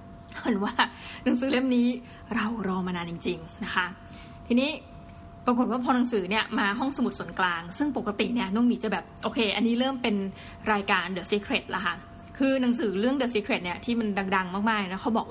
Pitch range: 195-240 Hz